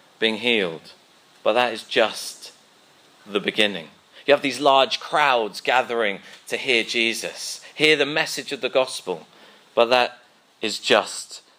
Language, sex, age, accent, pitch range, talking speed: English, male, 30-49, British, 105-125 Hz, 140 wpm